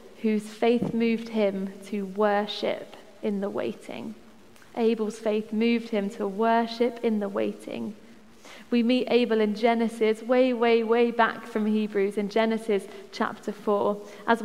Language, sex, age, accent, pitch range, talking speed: English, female, 20-39, British, 215-240 Hz, 140 wpm